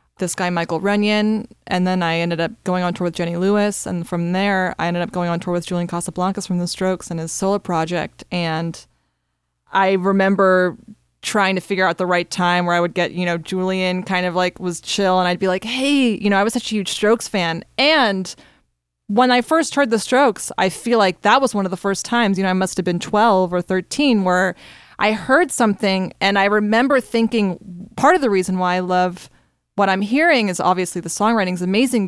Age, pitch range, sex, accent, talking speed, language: 20-39, 180-225 Hz, female, American, 225 wpm, English